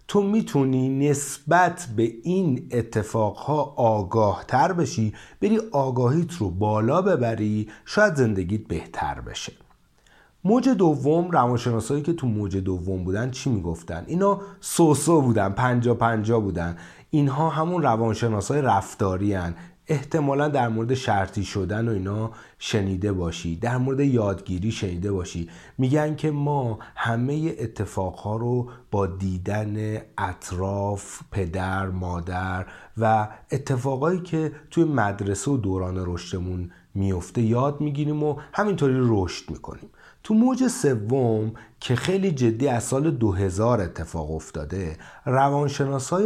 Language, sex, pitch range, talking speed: Persian, male, 95-145 Hz, 120 wpm